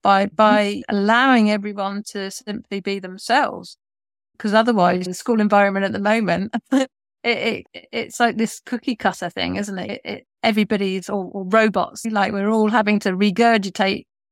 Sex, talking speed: female, 160 wpm